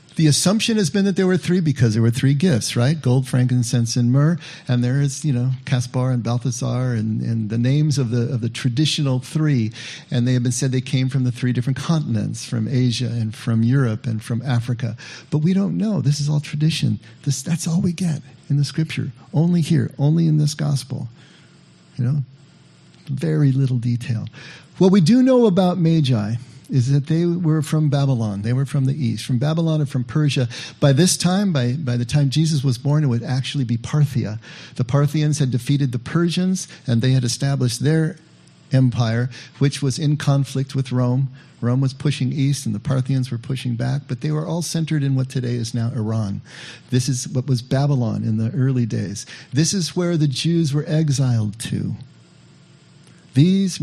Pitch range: 125-155 Hz